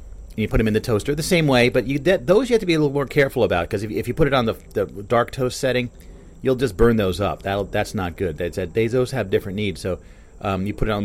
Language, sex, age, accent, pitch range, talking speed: English, male, 40-59, American, 85-120 Hz, 270 wpm